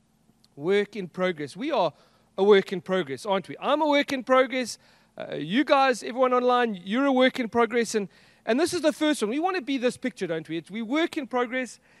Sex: male